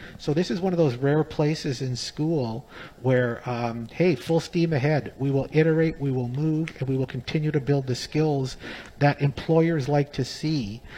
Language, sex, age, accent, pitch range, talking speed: English, male, 50-69, American, 130-165 Hz, 190 wpm